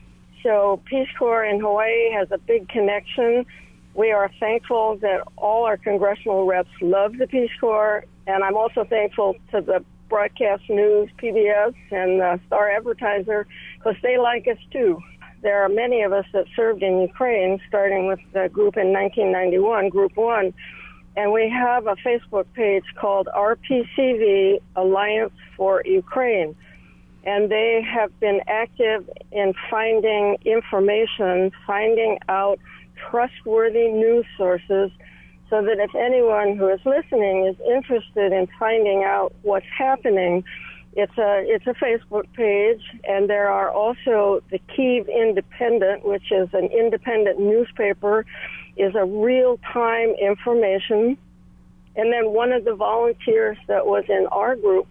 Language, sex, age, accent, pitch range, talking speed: English, female, 60-79, American, 195-230 Hz, 140 wpm